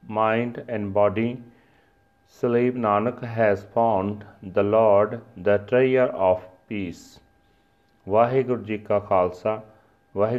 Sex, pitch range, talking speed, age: male, 105-130 Hz, 110 wpm, 40-59